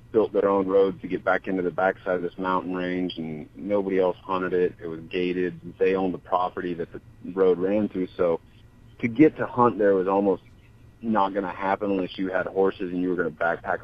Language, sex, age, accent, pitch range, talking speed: English, male, 30-49, American, 85-110 Hz, 230 wpm